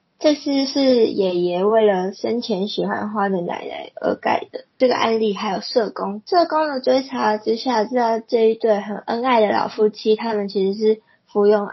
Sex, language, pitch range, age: female, Chinese, 210-265 Hz, 10-29